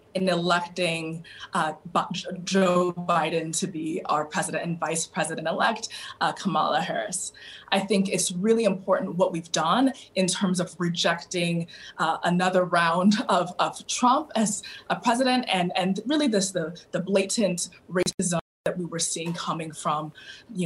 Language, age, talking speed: English, 20-39, 150 wpm